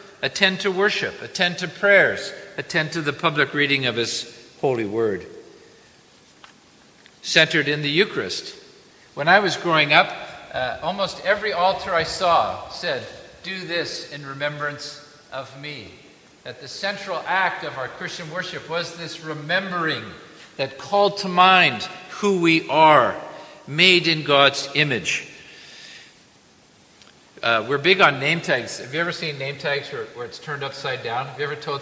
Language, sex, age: English, male, 50-69